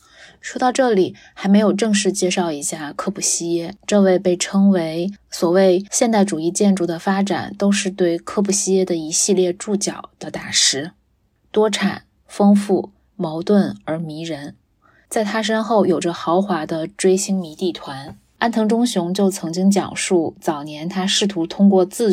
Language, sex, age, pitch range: Chinese, female, 20-39, 170-200 Hz